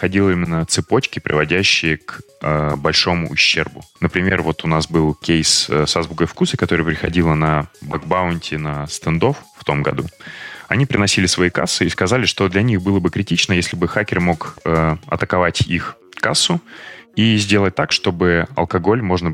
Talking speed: 160 wpm